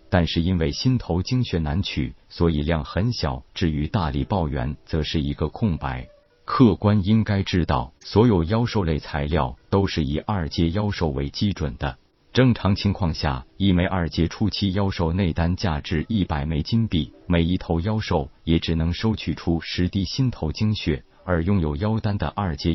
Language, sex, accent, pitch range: Chinese, male, native, 80-100 Hz